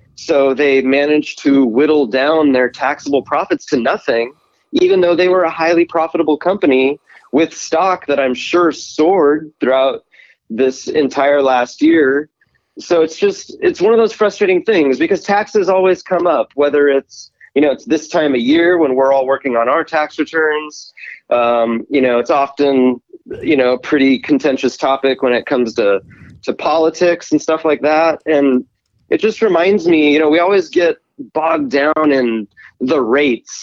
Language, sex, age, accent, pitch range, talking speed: English, male, 30-49, American, 130-170 Hz, 175 wpm